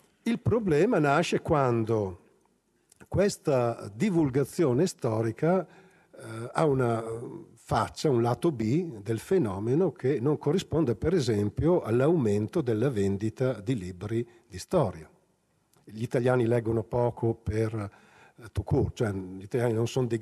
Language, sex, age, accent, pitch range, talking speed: Italian, male, 50-69, native, 110-140 Hz, 115 wpm